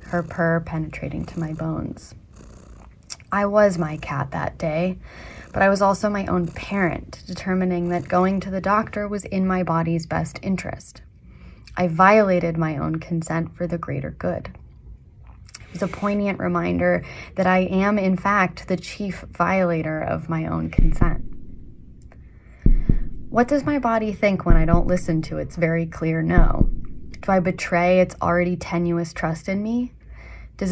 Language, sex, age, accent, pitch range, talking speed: English, female, 20-39, American, 165-190 Hz, 160 wpm